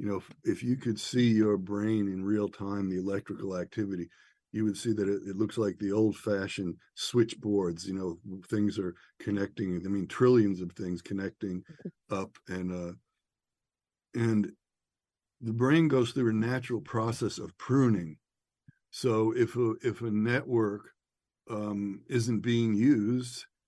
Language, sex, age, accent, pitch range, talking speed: English, male, 60-79, American, 100-120 Hz, 150 wpm